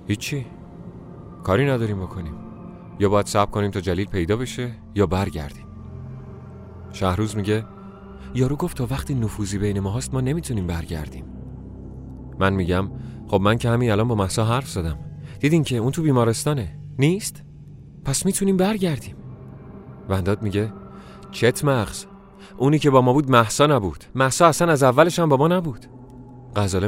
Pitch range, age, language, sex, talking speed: 95-135 Hz, 30-49, Persian, male, 150 wpm